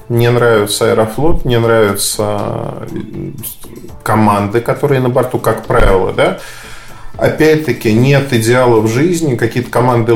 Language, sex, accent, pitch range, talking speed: Russian, male, native, 110-130 Hz, 105 wpm